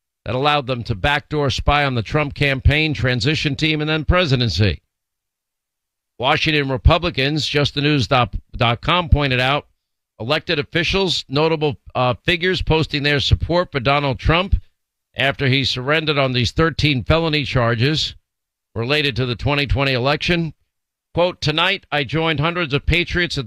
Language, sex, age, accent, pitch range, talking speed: English, male, 50-69, American, 120-155 Hz, 135 wpm